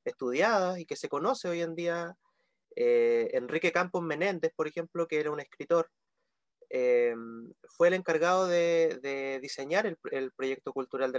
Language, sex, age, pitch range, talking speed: Spanish, male, 30-49, 165-235 Hz, 155 wpm